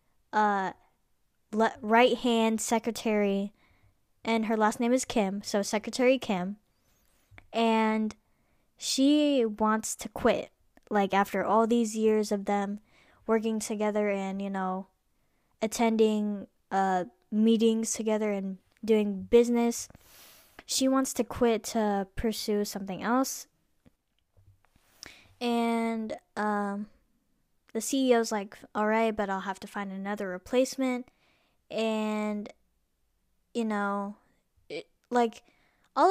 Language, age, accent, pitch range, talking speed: English, 10-29, American, 200-230 Hz, 105 wpm